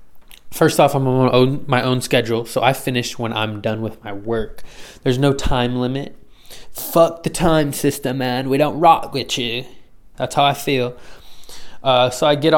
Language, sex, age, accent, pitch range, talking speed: English, male, 20-39, American, 125-160 Hz, 180 wpm